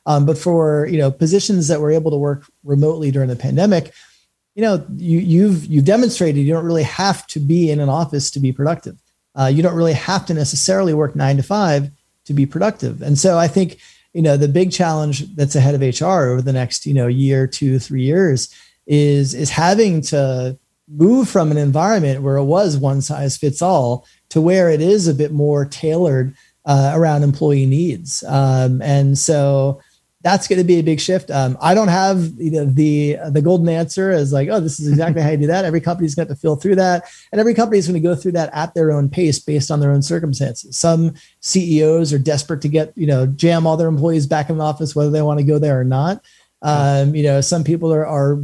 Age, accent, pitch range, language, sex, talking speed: 30-49, American, 140-175 Hz, English, male, 225 wpm